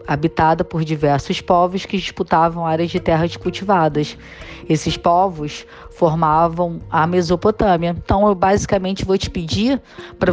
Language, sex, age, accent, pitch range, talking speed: Portuguese, female, 20-39, Brazilian, 165-195 Hz, 130 wpm